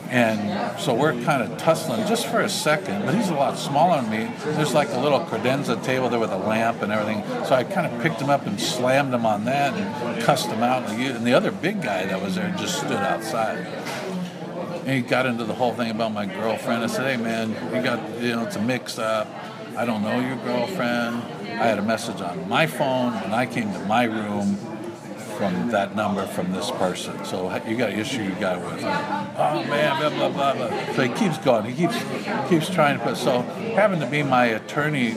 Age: 60-79